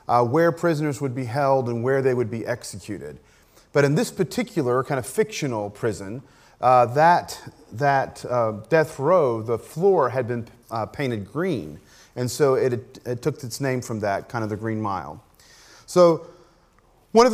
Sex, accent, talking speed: male, American, 175 wpm